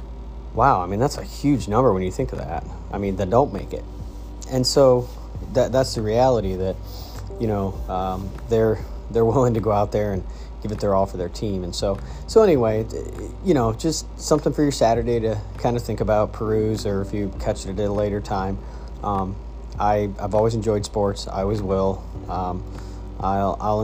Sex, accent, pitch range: male, American, 95-110 Hz